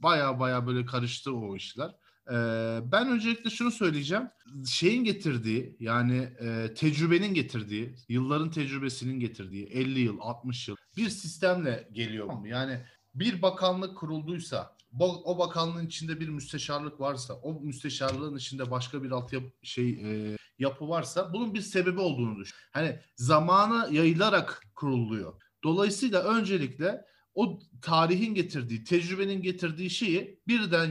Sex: male